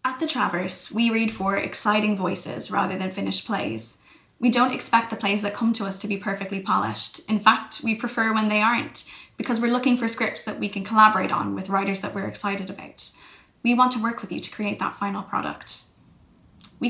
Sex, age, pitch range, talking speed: female, 10-29, 200-240 Hz, 215 wpm